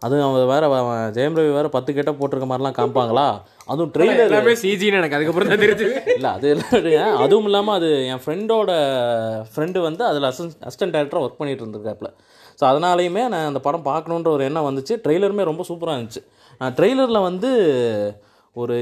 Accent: native